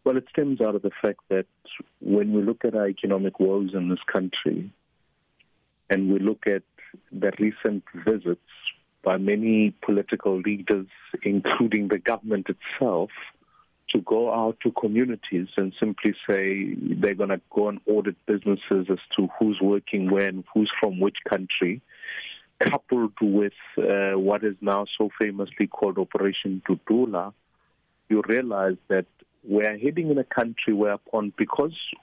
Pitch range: 100-110 Hz